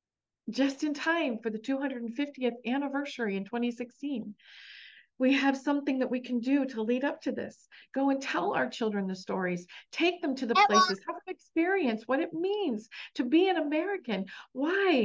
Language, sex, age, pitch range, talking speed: English, female, 40-59, 230-330 Hz, 175 wpm